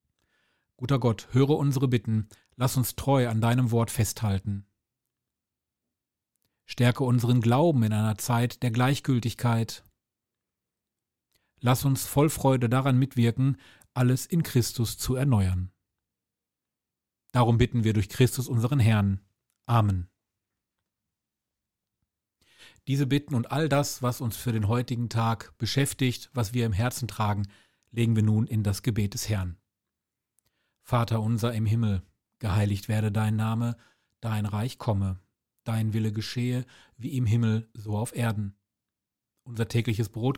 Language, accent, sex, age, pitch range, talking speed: German, German, male, 40-59, 105-125 Hz, 130 wpm